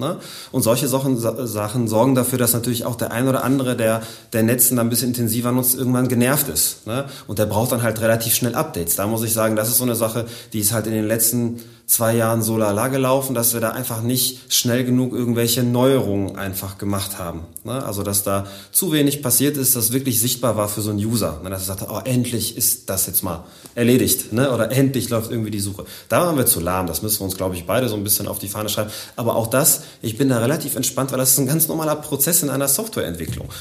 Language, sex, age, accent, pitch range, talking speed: German, male, 30-49, German, 105-130 Hz, 235 wpm